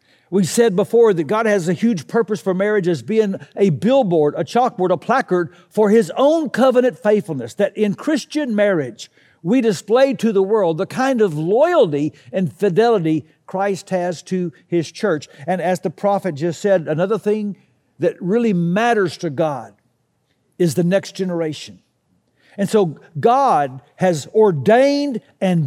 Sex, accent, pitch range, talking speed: male, American, 165-235 Hz, 155 wpm